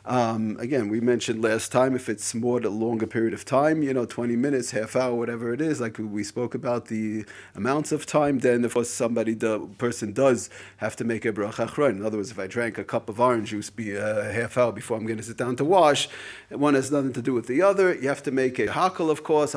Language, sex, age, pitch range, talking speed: English, male, 30-49, 115-145 Hz, 255 wpm